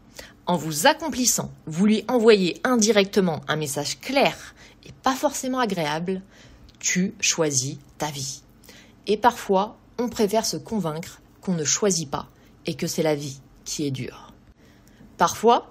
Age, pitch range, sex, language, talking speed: 30-49, 155-225 Hz, female, French, 140 wpm